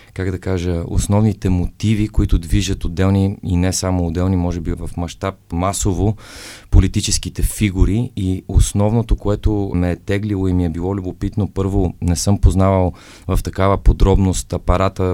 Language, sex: Bulgarian, male